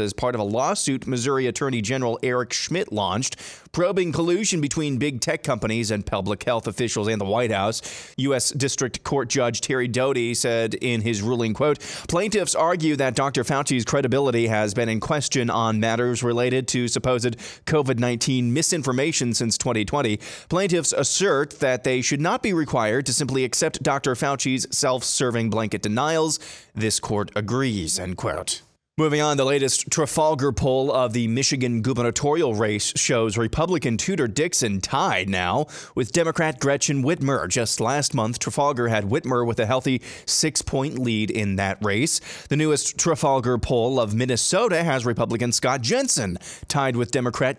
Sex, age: male, 20-39